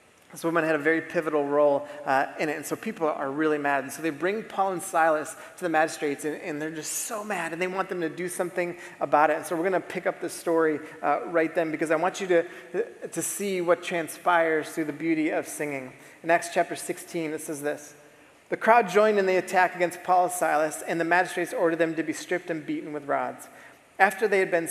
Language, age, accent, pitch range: English, 30-49, American, 155-185 Hz